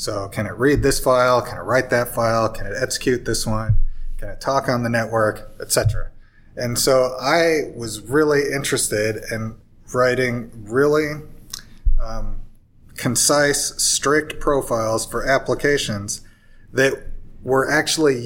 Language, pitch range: English, 110-130 Hz